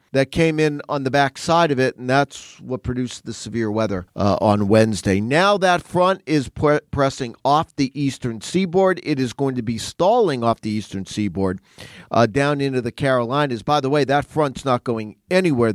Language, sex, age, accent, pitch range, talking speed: English, male, 40-59, American, 120-150 Hz, 195 wpm